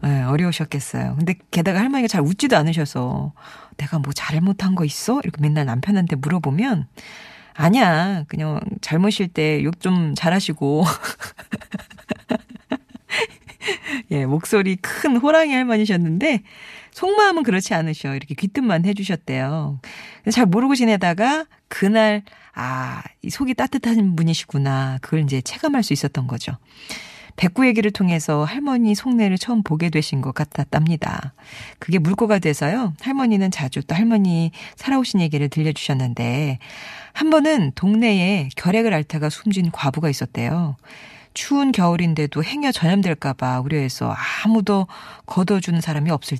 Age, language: 40-59, Korean